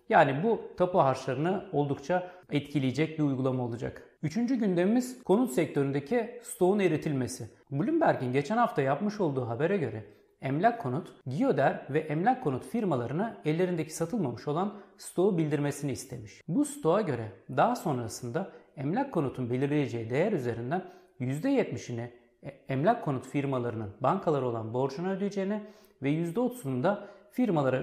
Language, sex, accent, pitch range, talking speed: Turkish, male, native, 130-185 Hz, 125 wpm